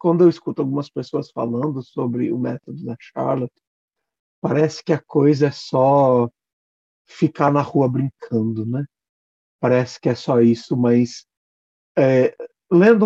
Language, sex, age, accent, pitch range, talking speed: Portuguese, male, 50-69, Brazilian, 120-155 Hz, 140 wpm